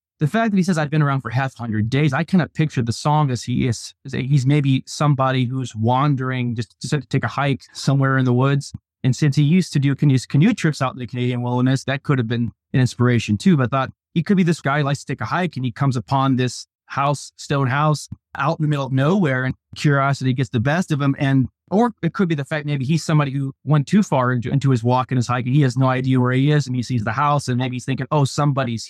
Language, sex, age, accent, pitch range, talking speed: English, male, 20-39, American, 125-150 Hz, 275 wpm